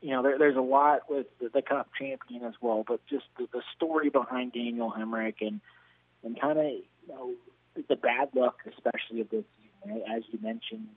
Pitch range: 110-125 Hz